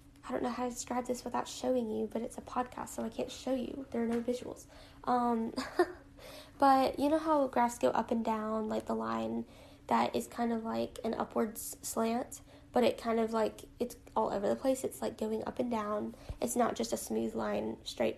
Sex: female